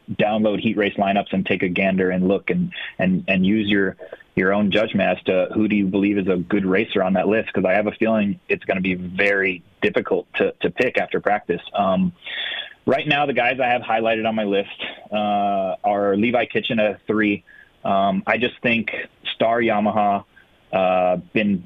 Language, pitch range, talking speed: English, 100-115 Hz, 195 wpm